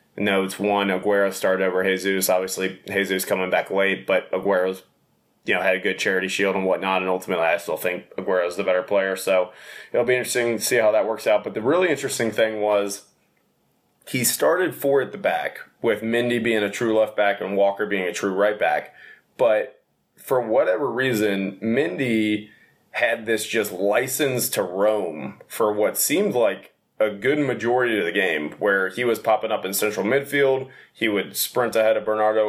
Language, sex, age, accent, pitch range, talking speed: English, male, 20-39, American, 95-110 Hz, 190 wpm